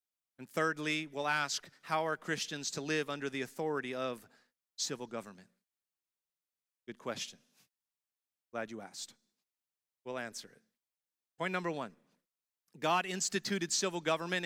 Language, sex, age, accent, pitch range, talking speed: English, male, 40-59, American, 155-205 Hz, 125 wpm